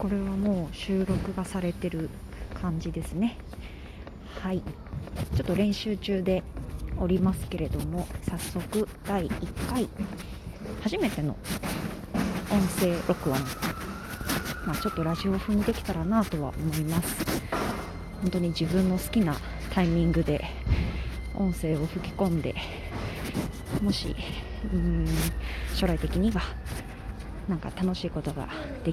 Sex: female